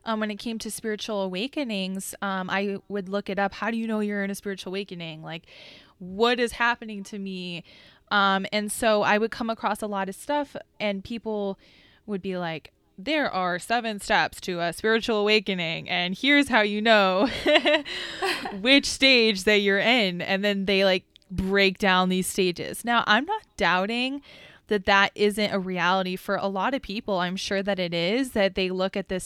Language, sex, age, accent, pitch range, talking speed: English, female, 20-39, American, 190-235 Hz, 195 wpm